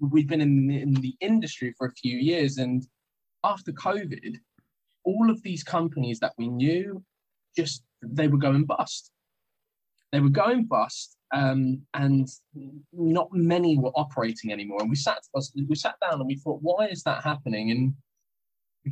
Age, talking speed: 10-29, 160 wpm